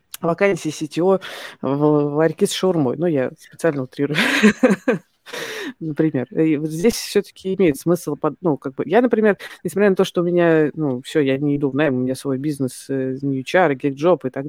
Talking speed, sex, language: 155 wpm, female, Russian